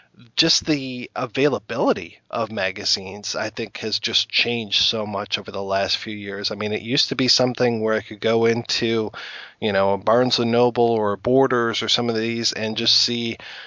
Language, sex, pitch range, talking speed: English, male, 105-120 Hz, 190 wpm